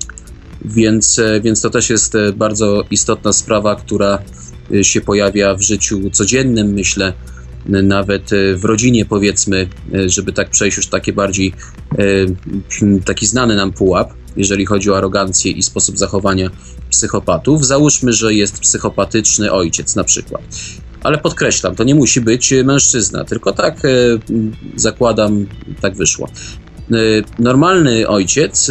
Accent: native